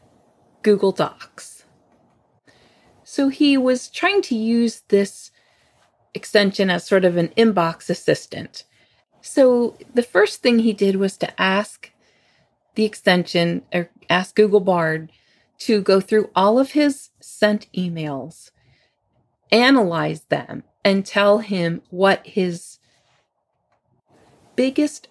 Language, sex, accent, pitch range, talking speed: English, female, American, 170-215 Hz, 110 wpm